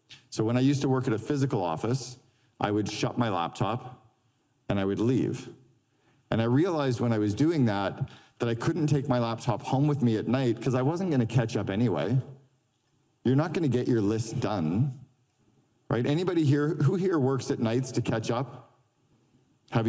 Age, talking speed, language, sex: 40-59, 200 wpm, English, male